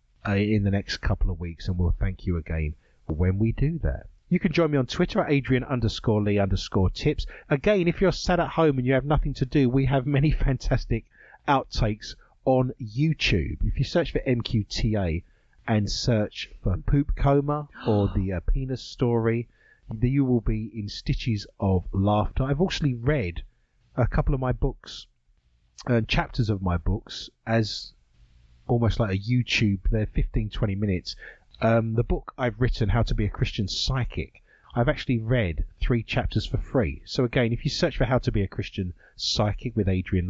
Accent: British